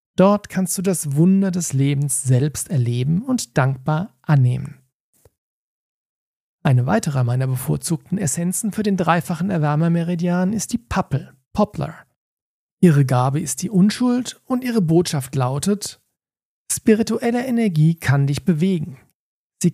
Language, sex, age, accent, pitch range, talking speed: German, male, 40-59, German, 140-195 Hz, 120 wpm